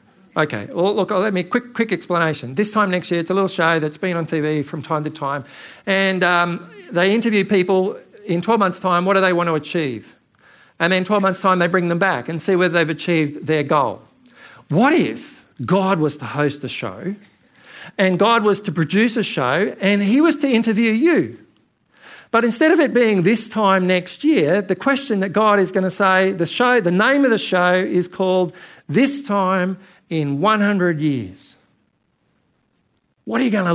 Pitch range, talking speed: 155-205 Hz, 200 wpm